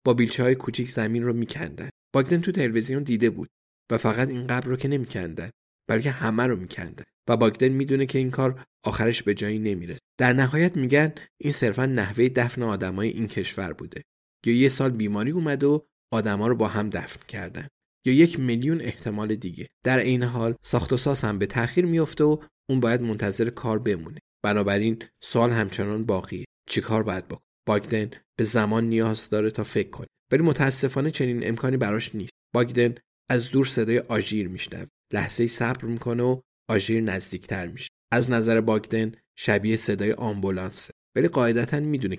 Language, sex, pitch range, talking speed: Persian, male, 110-130 Hz, 170 wpm